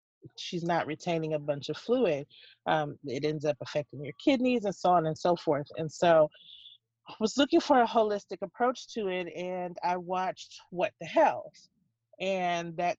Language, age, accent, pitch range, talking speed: English, 30-49, American, 155-185 Hz, 180 wpm